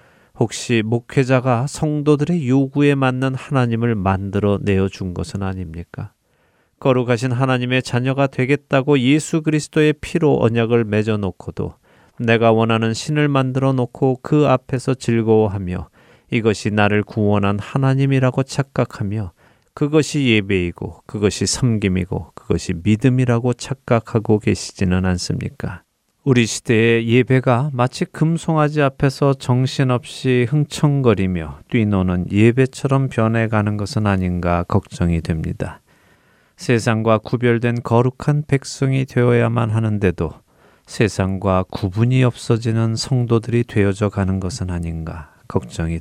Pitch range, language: 105-135 Hz, Korean